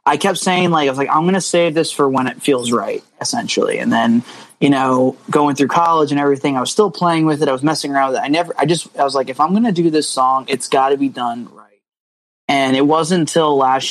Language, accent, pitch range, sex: English, American, 130-150 Hz, male